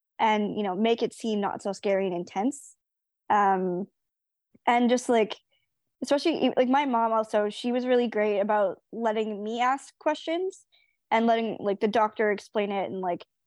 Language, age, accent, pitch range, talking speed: English, 20-39, American, 205-260 Hz, 170 wpm